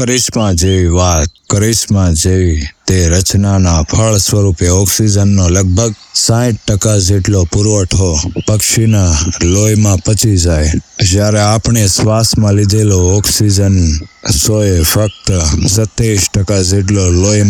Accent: native